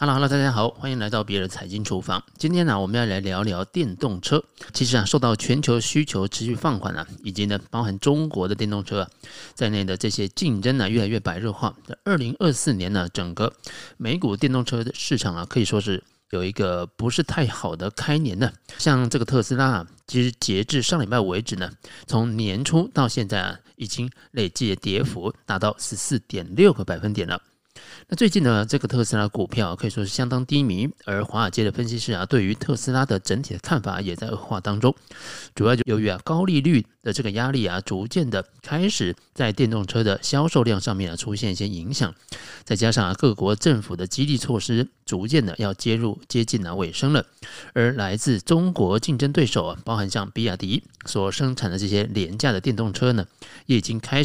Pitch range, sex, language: 100-130 Hz, male, Chinese